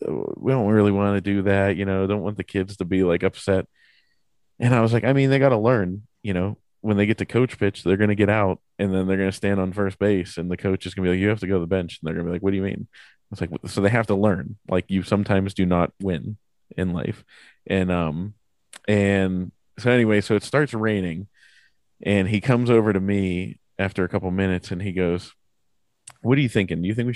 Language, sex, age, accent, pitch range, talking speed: English, male, 20-39, American, 95-110 Hz, 265 wpm